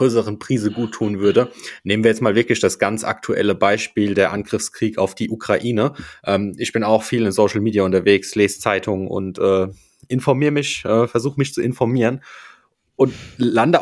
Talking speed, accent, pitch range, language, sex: 175 wpm, German, 100-130 Hz, German, male